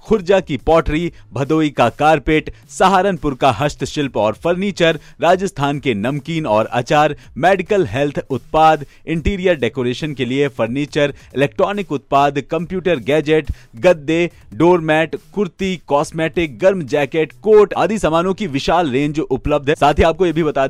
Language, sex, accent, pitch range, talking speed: Hindi, male, native, 125-165 Hz, 140 wpm